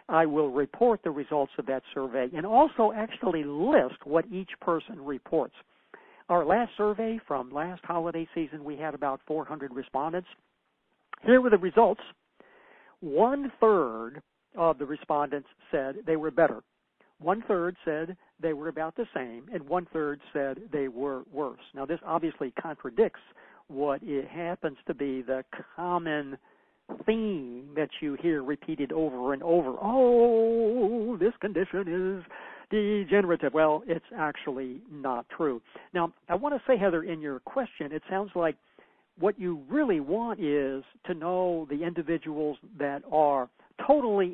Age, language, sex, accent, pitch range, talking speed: 60-79, English, male, American, 145-205 Hz, 150 wpm